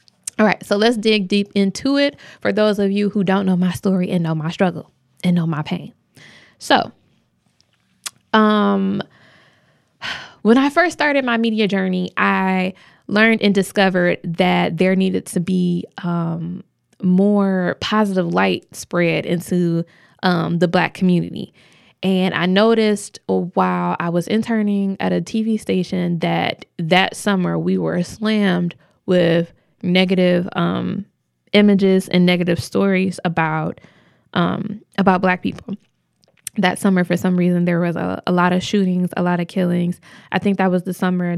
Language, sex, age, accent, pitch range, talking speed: English, female, 20-39, American, 175-200 Hz, 150 wpm